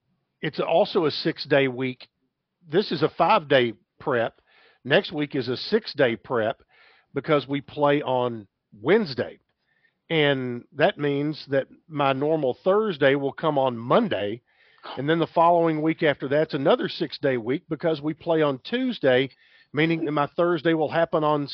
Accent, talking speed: American, 150 wpm